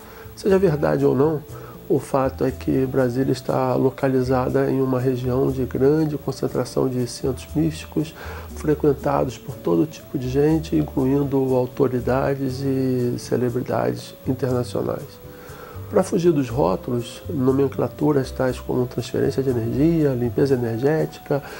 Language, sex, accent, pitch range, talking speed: Portuguese, male, Brazilian, 115-140 Hz, 120 wpm